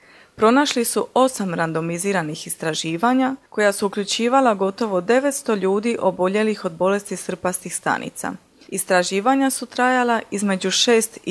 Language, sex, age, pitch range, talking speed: Croatian, female, 30-49, 185-245 Hz, 110 wpm